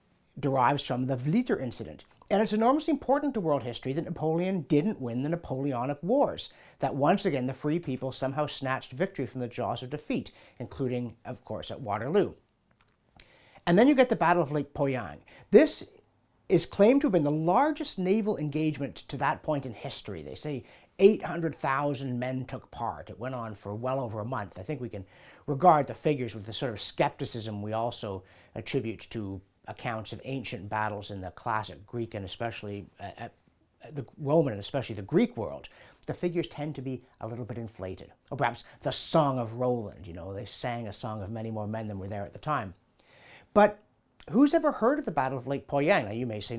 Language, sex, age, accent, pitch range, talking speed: English, male, 50-69, American, 110-155 Hz, 200 wpm